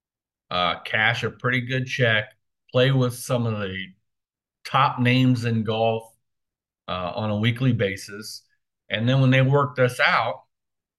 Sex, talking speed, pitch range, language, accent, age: male, 145 wpm, 100-120 Hz, English, American, 40-59